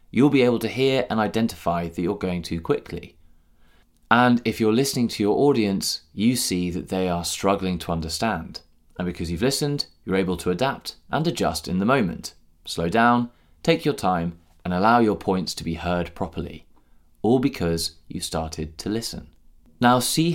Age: 20-39